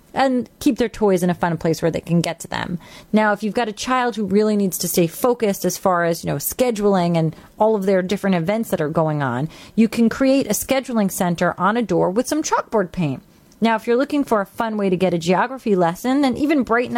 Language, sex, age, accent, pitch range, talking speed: English, female, 30-49, American, 175-235 Hz, 250 wpm